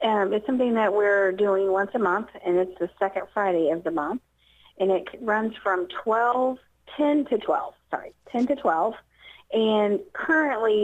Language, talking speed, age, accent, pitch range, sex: English, 170 wpm, 40-59, American, 170-205 Hz, female